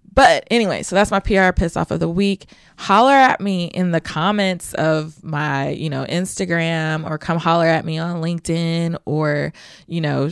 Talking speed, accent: 185 wpm, American